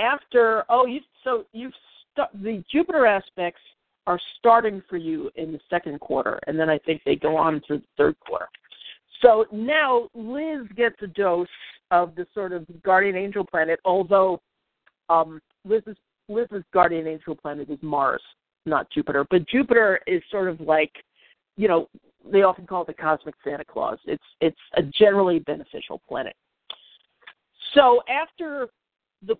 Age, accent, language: 50-69, American, English